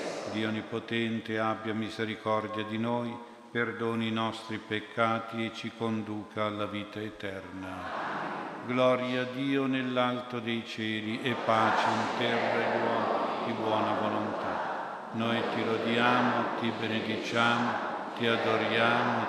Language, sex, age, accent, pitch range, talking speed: Italian, male, 60-79, native, 110-120 Hz, 110 wpm